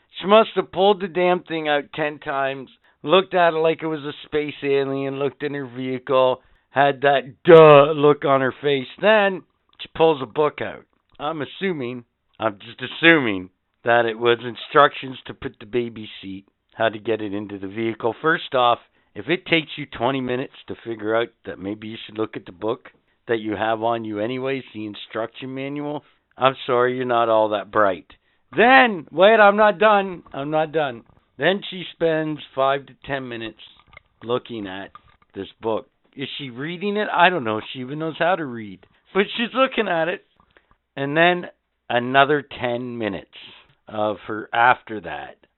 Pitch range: 115-155 Hz